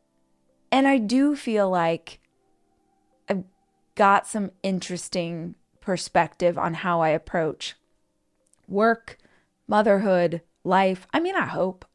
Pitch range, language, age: 170-200 Hz, English, 20-39